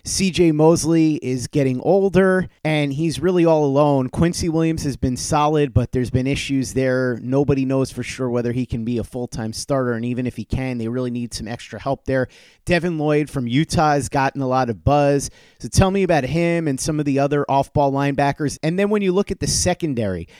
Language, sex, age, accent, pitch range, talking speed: English, male, 30-49, American, 130-160 Hz, 215 wpm